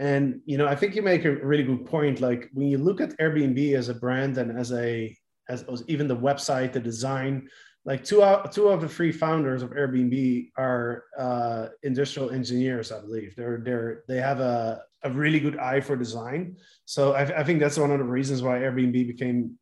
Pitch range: 125-145 Hz